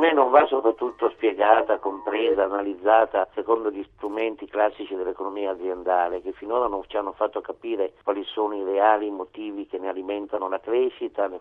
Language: Italian